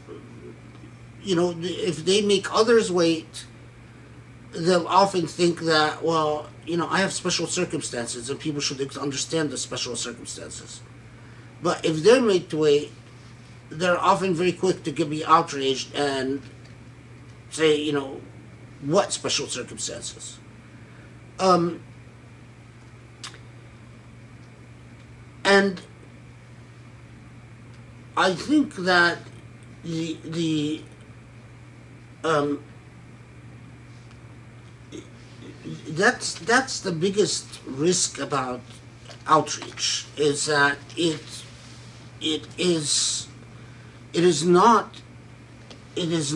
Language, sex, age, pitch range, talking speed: English, male, 50-69, 120-170 Hz, 90 wpm